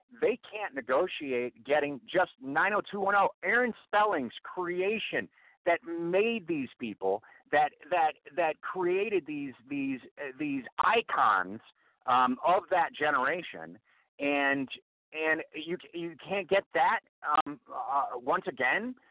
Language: English